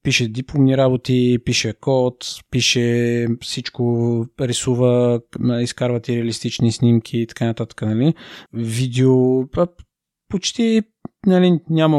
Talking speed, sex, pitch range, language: 110 wpm, male, 115-135 Hz, Bulgarian